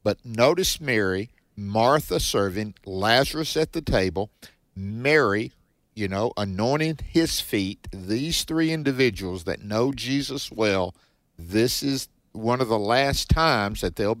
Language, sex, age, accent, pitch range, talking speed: English, male, 50-69, American, 95-130 Hz, 130 wpm